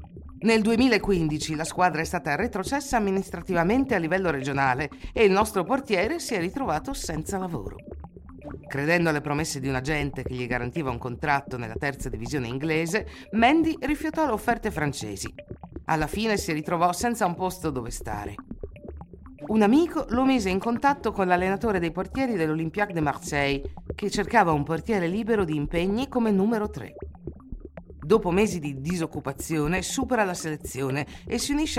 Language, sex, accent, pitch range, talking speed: Italian, female, native, 145-215 Hz, 155 wpm